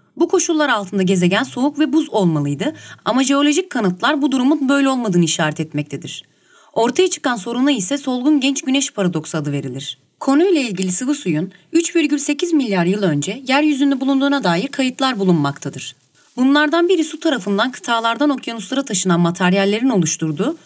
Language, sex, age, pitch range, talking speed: Turkish, female, 30-49, 185-295 Hz, 140 wpm